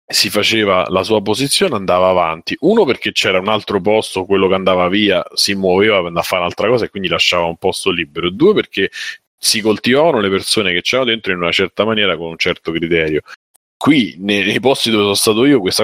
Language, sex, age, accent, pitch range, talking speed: Italian, male, 30-49, native, 95-110 Hz, 210 wpm